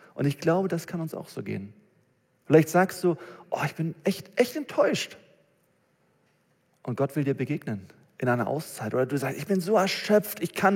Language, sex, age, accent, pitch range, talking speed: German, male, 40-59, German, 120-175 Hz, 195 wpm